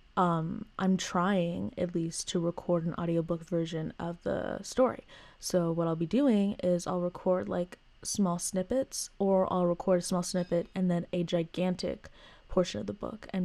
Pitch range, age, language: 175-195 Hz, 20-39, English